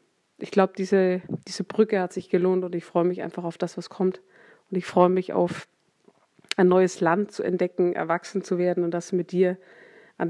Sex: female